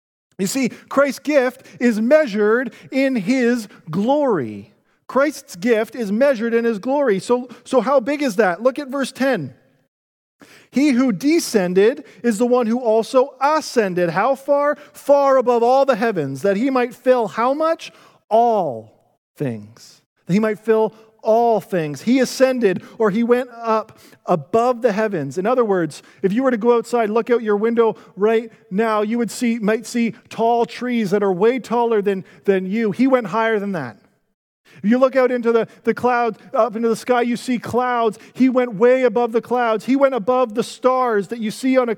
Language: English